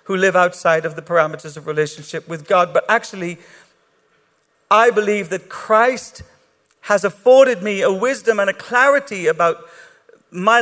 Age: 50-69